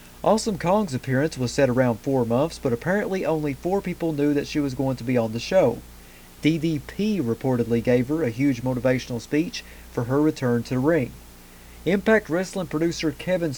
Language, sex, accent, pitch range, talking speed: English, male, American, 120-155 Hz, 180 wpm